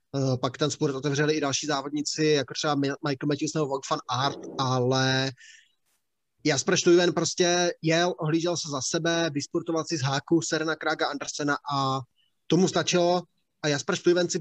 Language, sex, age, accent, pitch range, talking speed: Czech, male, 20-39, native, 140-165 Hz, 160 wpm